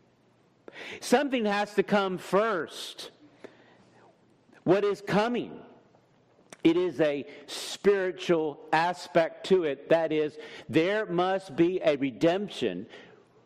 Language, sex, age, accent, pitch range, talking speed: English, male, 50-69, American, 175-225 Hz, 100 wpm